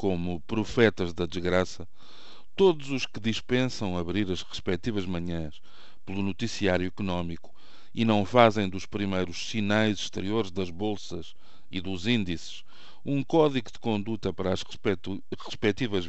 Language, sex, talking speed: Portuguese, male, 130 wpm